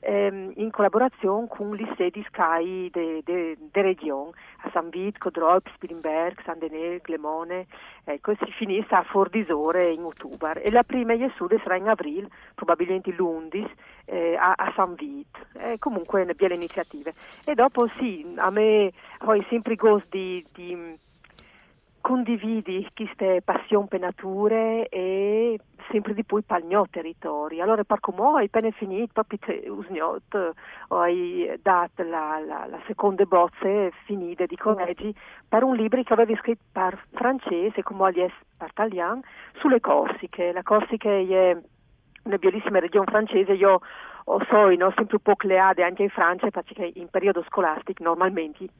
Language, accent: Italian, native